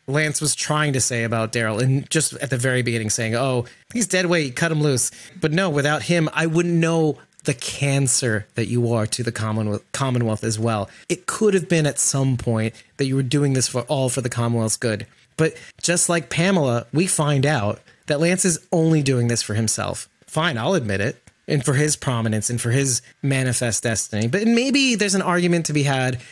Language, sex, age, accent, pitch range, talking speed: English, male, 30-49, American, 120-155 Hz, 210 wpm